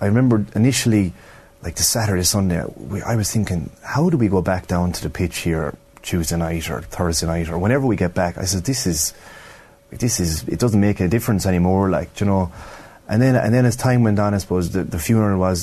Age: 30-49